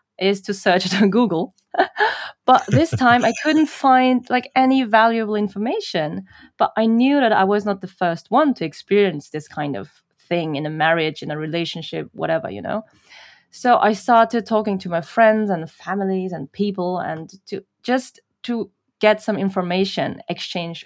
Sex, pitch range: female, 180-245 Hz